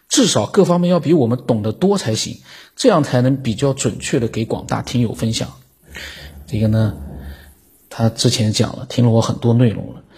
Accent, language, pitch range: native, Chinese, 110-130 Hz